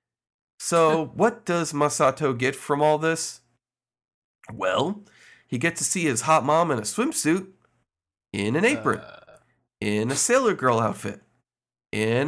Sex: male